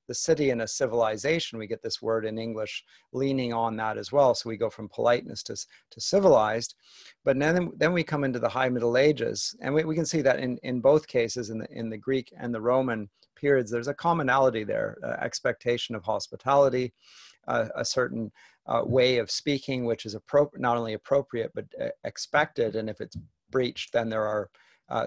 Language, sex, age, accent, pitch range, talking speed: English, male, 40-59, American, 110-130 Hz, 205 wpm